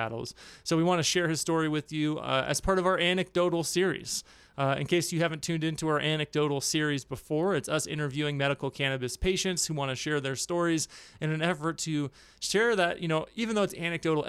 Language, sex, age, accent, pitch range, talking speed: English, male, 30-49, American, 140-170 Hz, 215 wpm